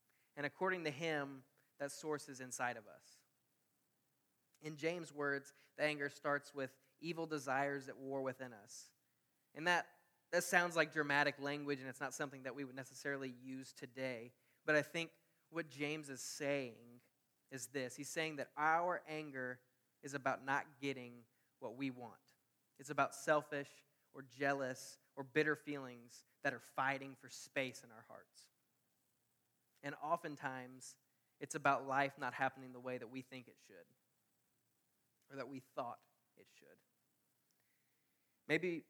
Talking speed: 150 wpm